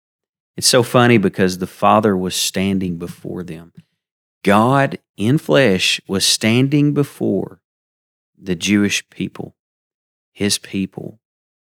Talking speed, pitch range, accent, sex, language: 105 wpm, 95-110 Hz, American, male, English